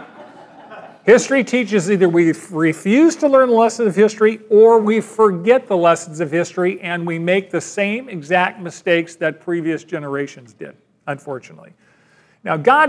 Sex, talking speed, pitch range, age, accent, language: male, 145 wpm, 165-215 Hz, 40-59, American, English